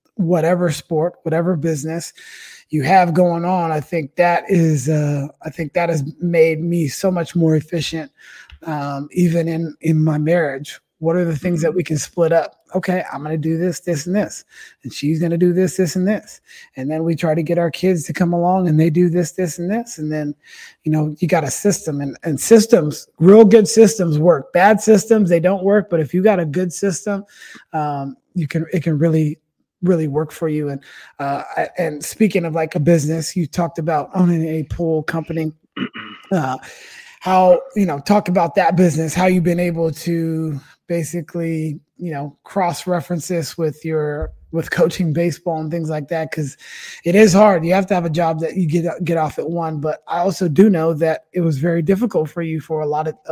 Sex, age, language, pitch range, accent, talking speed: male, 30-49, English, 155-180 Hz, American, 210 wpm